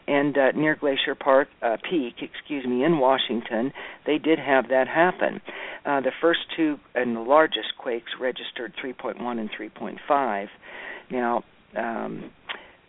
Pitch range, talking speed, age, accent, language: 125-155 Hz, 140 wpm, 60-79, American, English